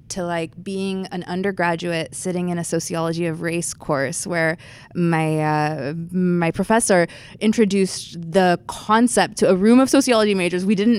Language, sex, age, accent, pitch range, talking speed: English, female, 20-39, American, 165-190 Hz, 155 wpm